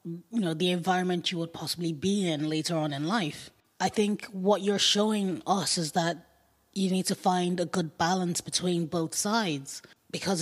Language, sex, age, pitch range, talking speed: English, female, 20-39, 165-200 Hz, 185 wpm